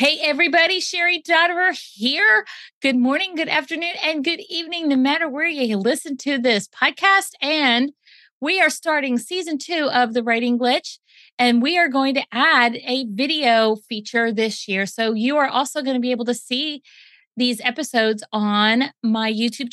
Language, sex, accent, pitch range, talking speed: English, female, American, 225-310 Hz, 170 wpm